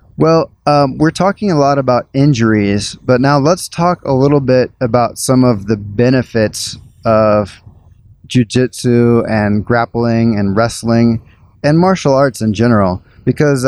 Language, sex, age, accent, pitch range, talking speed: English, male, 20-39, American, 105-125 Hz, 140 wpm